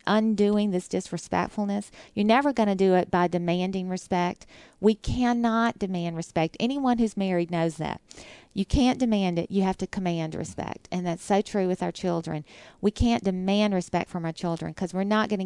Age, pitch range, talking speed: 40-59, 175-205 Hz, 185 wpm